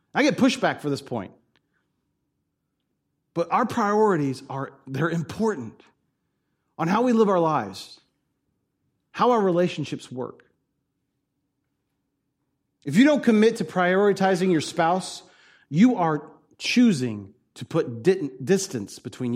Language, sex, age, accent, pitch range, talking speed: English, male, 40-59, American, 135-225 Hz, 115 wpm